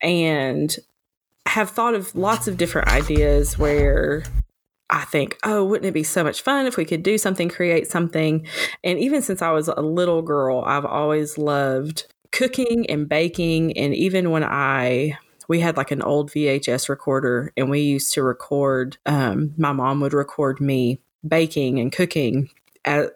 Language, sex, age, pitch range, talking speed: English, female, 20-39, 145-180 Hz, 170 wpm